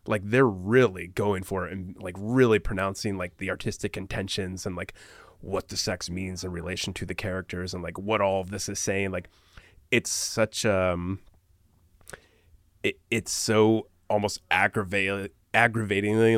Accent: American